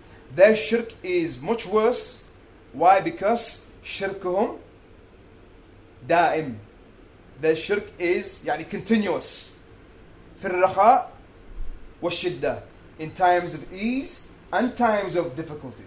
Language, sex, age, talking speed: English, male, 30-49, 85 wpm